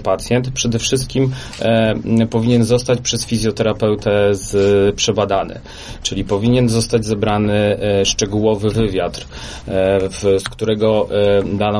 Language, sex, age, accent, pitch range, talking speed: Polish, male, 30-49, native, 100-115 Hz, 85 wpm